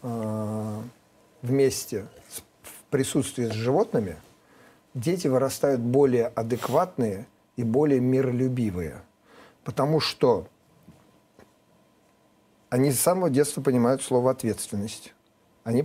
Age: 40-59